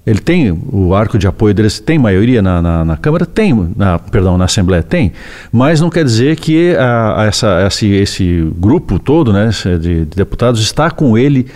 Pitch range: 95-120 Hz